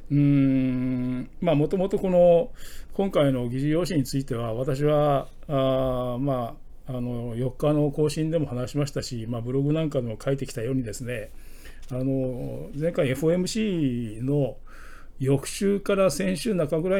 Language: Japanese